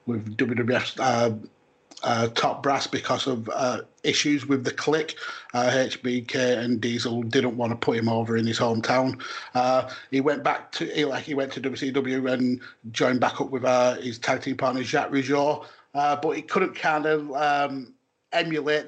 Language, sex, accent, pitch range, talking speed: English, male, British, 125-145 Hz, 180 wpm